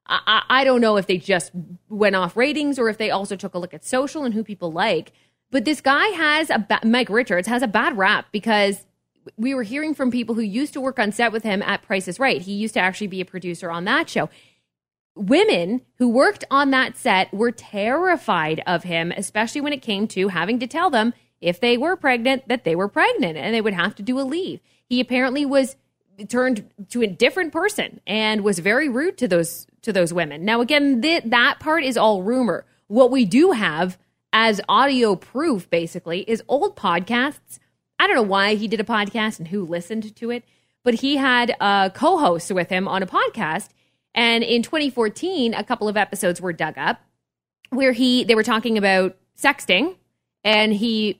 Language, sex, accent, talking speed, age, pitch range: English, female, American, 205 wpm, 20-39, 195-260 Hz